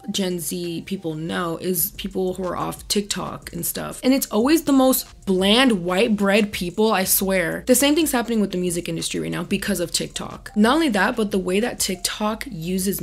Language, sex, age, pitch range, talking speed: English, female, 20-39, 185-230 Hz, 205 wpm